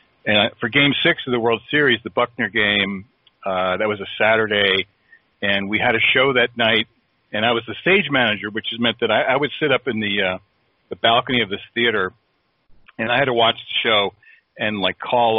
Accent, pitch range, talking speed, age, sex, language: American, 100-135 Hz, 215 wpm, 40-59, male, English